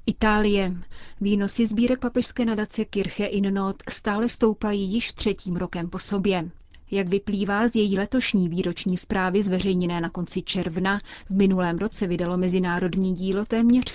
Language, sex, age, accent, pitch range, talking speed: Czech, female, 30-49, native, 185-225 Hz, 140 wpm